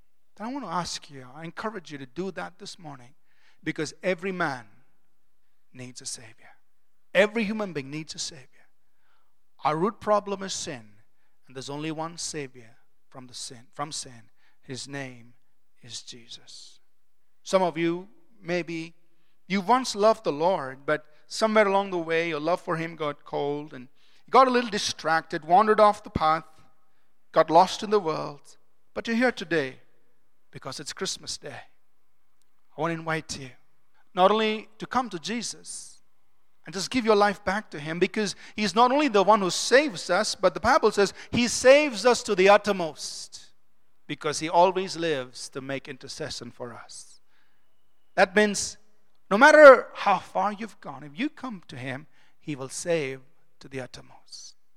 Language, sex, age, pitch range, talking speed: English, male, 40-59, 145-210 Hz, 165 wpm